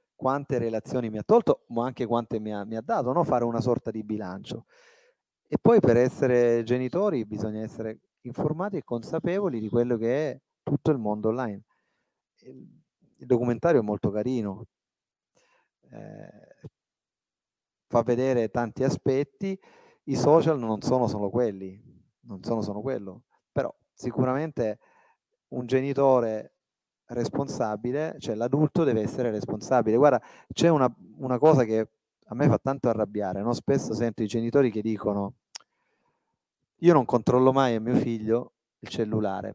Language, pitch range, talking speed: Italian, 110-150 Hz, 140 wpm